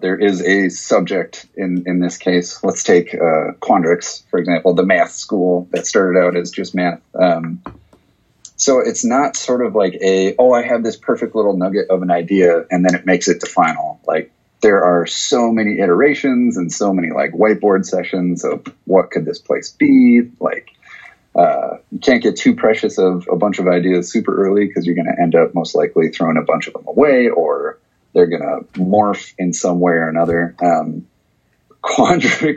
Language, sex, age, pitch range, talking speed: English, male, 30-49, 90-110 Hz, 195 wpm